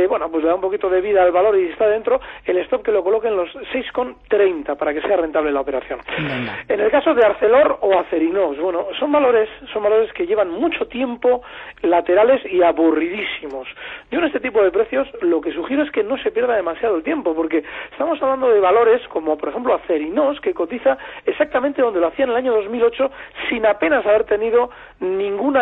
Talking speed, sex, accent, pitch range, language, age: 205 wpm, male, Spanish, 190-290 Hz, Spanish, 40-59